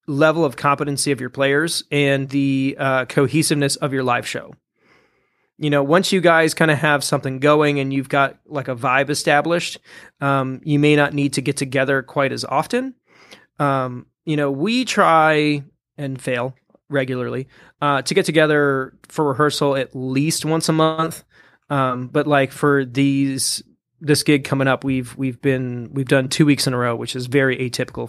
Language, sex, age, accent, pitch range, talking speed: English, male, 30-49, American, 130-150 Hz, 180 wpm